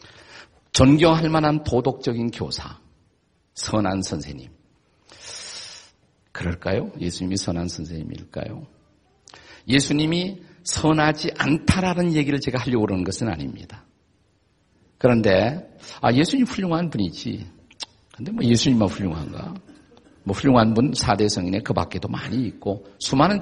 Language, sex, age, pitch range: Korean, male, 50-69, 100-145 Hz